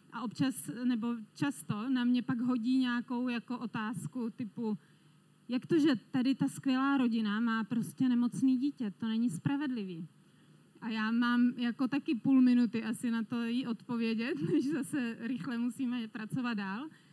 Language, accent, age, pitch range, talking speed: Czech, native, 30-49, 215-255 Hz, 150 wpm